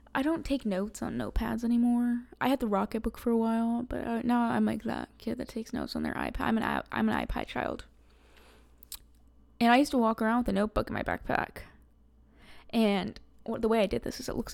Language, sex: English, female